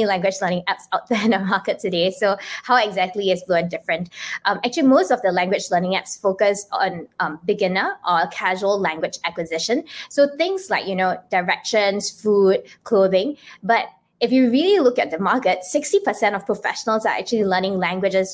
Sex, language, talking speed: female, English, 180 wpm